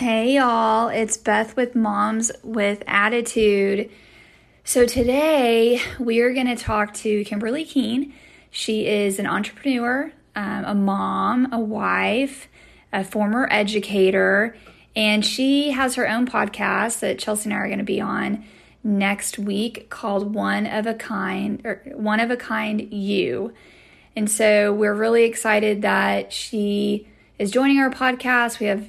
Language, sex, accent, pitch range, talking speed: English, female, American, 210-240 Hz, 145 wpm